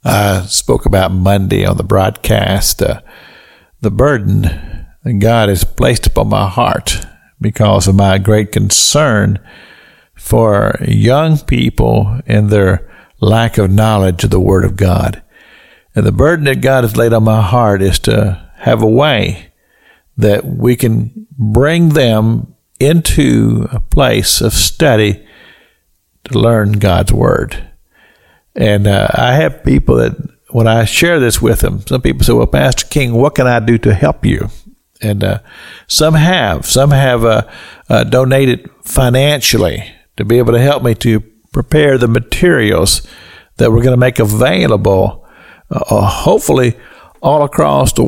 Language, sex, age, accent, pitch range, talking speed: English, male, 50-69, American, 100-125 Hz, 150 wpm